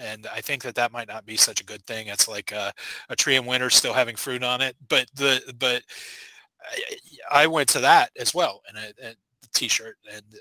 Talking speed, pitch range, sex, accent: 225 wpm, 115-150 Hz, male, American